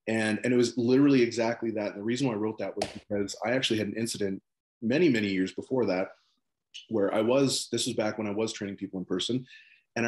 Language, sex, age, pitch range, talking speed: English, male, 30-49, 105-125 Hz, 240 wpm